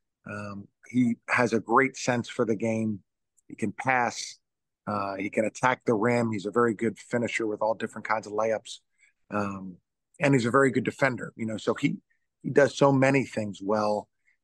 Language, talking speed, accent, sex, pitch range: English, 190 wpm, American, male, 110-125 Hz